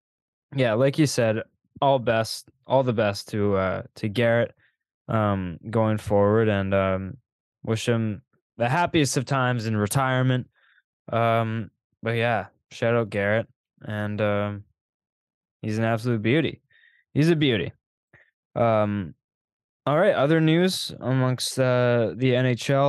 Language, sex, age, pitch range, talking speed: English, male, 10-29, 105-130 Hz, 130 wpm